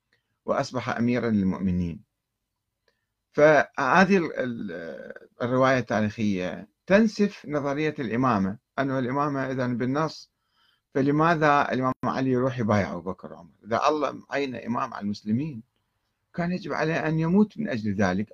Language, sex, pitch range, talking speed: Arabic, male, 105-145 Hz, 115 wpm